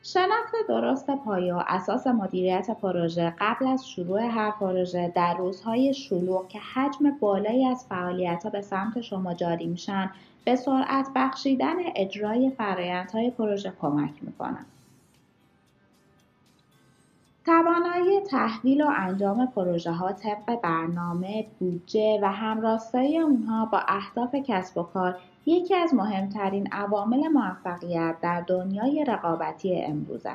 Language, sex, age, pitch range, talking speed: Persian, female, 30-49, 185-270 Hz, 120 wpm